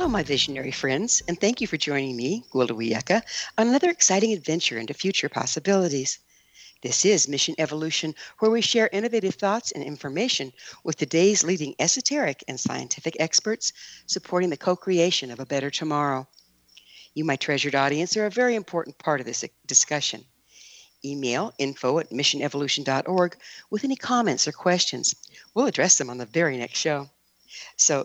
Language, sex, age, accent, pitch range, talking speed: English, female, 60-79, American, 140-210 Hz, 155 wpm